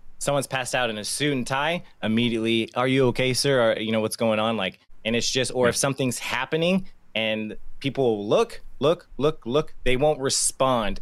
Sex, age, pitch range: male, 20-39, 110-135 Hz